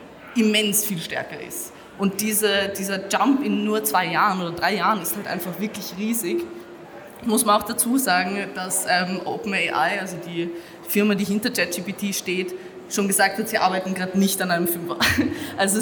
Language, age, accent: German, 20-39, German